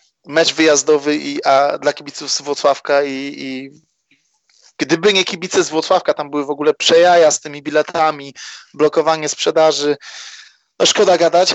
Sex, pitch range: male, 150-170 Hz